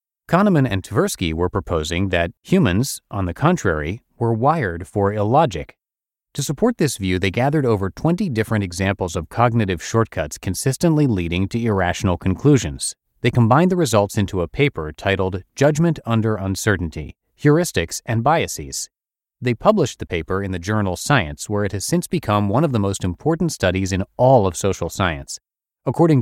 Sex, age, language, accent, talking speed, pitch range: male, 30-49, English, American, 165 wpm, 95-130 Hz